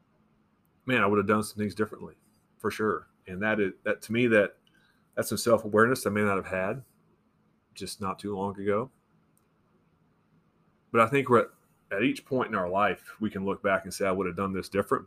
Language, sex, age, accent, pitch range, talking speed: English, male, 30-49, American, 95-110 Hz, 215 wpm